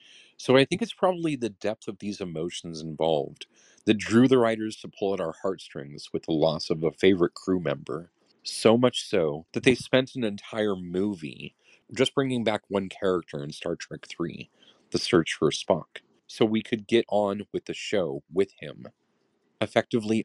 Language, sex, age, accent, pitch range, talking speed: English, male, 40-59, American, 90-125 Hz, 180 wpm